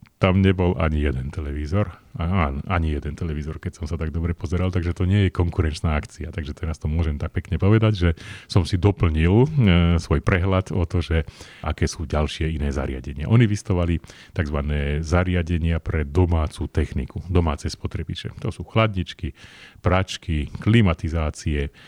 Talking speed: 155 wpm